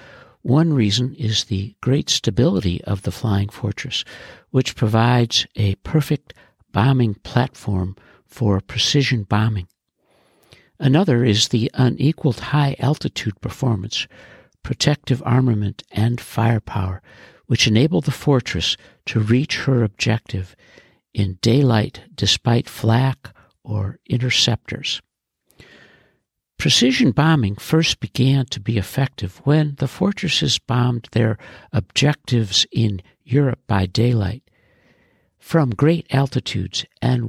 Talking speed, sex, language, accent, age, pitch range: 105 wpm, male, English, American, 60-79, 110-140 Hz